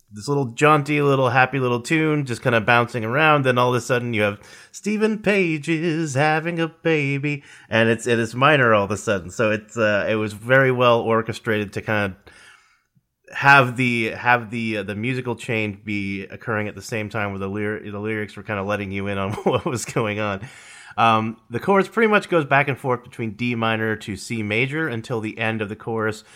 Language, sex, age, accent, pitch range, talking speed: English, male, 30-49, American, 100-130 Hz, 215 wpm